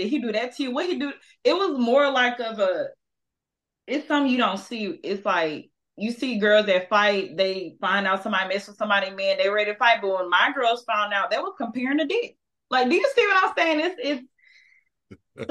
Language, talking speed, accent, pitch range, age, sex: English, 230 wpm, American, 185-265 Hz, 20-39, female